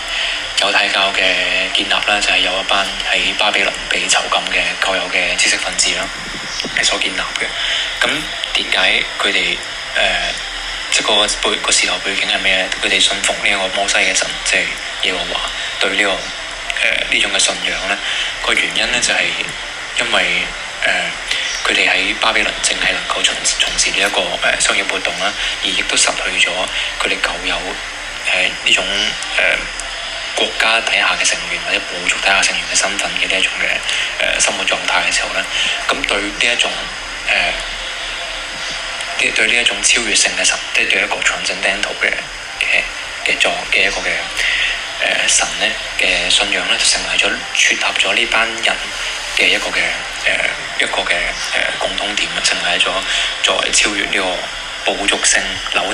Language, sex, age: Chinese, male, 20-39